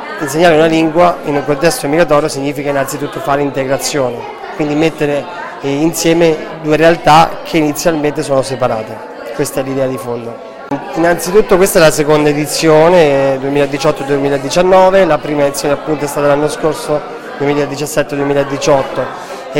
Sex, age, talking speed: male, 30-49, 125 wpm